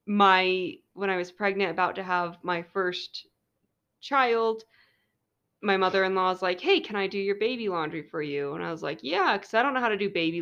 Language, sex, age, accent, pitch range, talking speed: English, female, 20-39, American, 185-240 Hz, 215 wpm